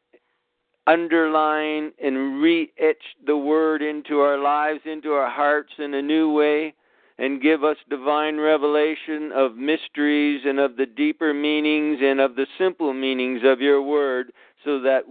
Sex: male